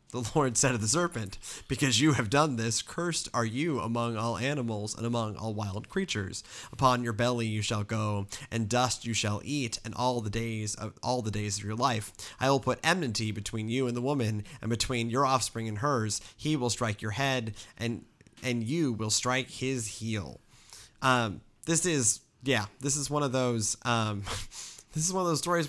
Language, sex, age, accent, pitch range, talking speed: English, male, 30-49, American, 115-160 Hz, 205 wpm